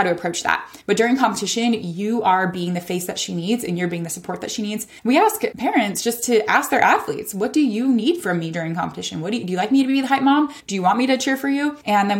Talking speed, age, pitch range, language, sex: 285 wpm, 20-39, 180-225 Hz, English, female